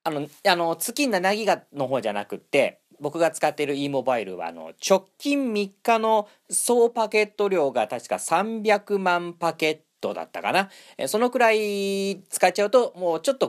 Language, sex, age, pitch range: Japanese, male, 40-59, 150-225 Hz